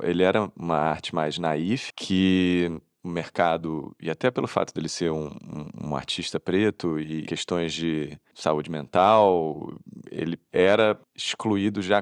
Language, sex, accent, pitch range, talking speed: Portuguese, male, Brazilian, 85-110 Hz, 145 wpm